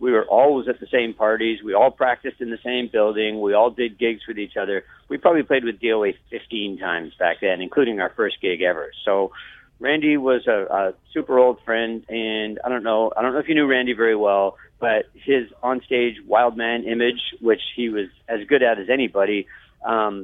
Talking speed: 210 wpm